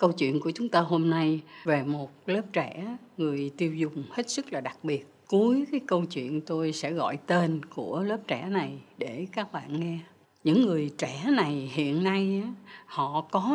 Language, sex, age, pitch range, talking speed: Vietnamese, female, 60-79, 145-195 Hz, 190 wpm